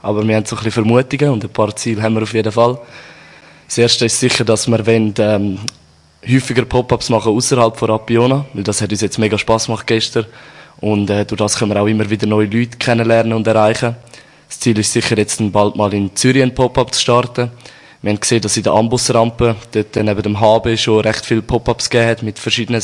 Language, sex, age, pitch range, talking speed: German, male, 20-39, 105-120 Hz, 225 wpm